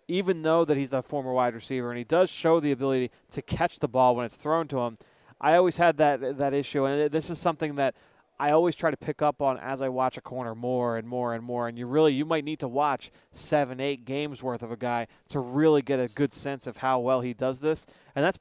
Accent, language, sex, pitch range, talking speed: American, English, male, 125-145 Hz, 260 wpm